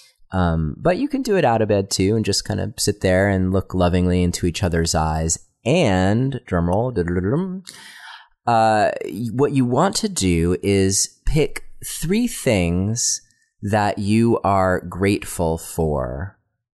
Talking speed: 145 wpm